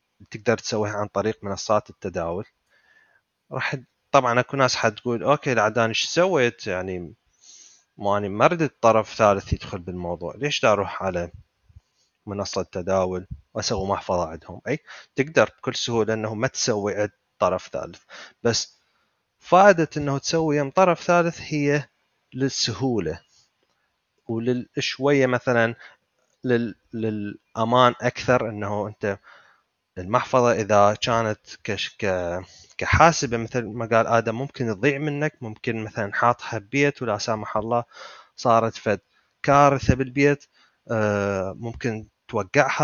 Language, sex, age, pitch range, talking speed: Arabic, male, 30-49, 105-140 Hz, 110 wpm